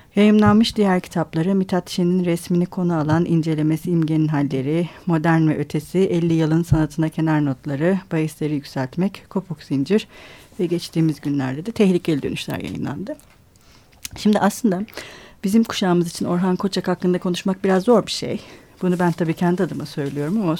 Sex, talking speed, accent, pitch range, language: female, 145 wpm, native, 165-200 Hz, Turkish